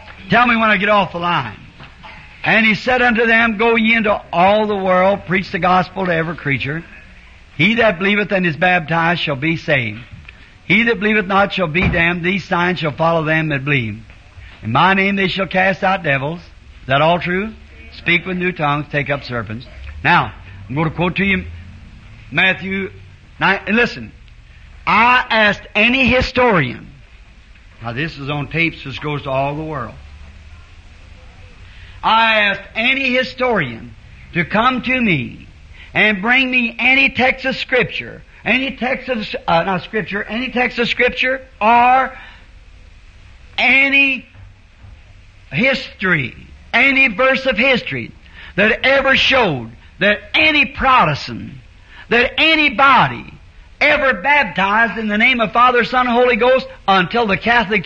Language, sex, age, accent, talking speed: English, male, 60-79, American, 150 wpm